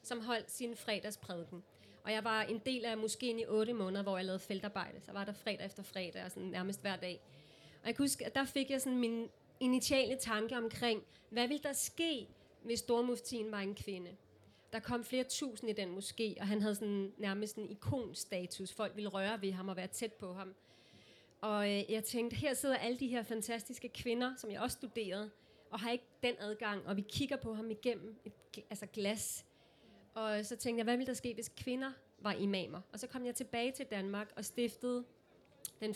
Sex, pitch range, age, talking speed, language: female, 200-240 Hz, 30-49, 210 wpm, Danish